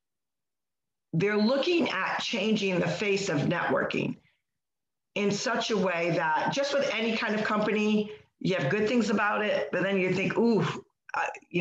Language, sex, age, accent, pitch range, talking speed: English, female, 50-69, American, 180-215 Hz, 165 wpm